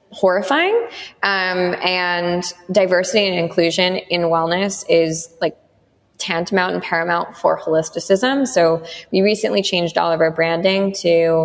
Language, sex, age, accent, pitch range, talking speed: English, female, 20-39, American, 160-180 Hz, 125 wpm